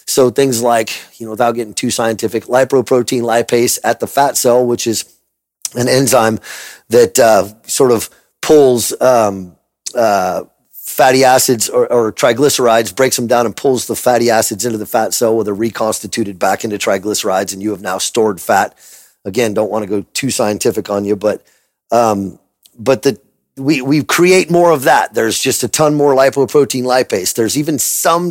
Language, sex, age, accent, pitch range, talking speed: English, male, 30-49, American, 110-140 Hz, 180 wpm